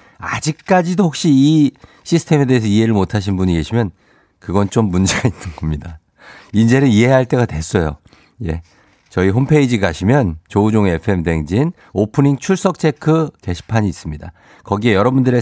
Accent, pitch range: native, 95-135 Hz